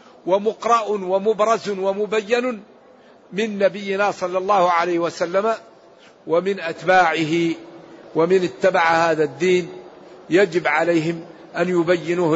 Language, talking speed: Arabic, 90 wpm